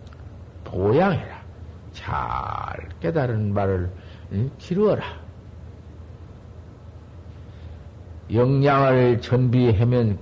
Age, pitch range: 50-69, 90-125 Hz